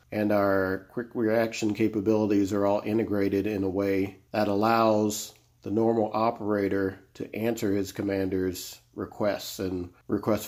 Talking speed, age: 130 wpm, 40-59